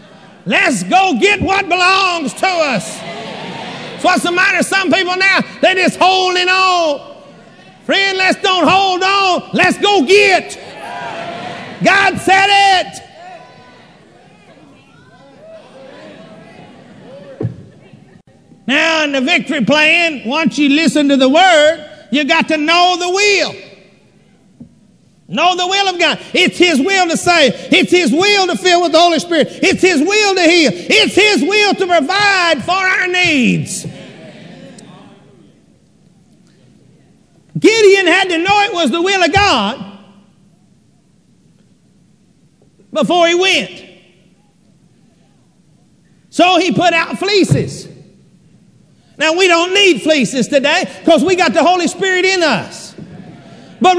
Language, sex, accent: English, male, American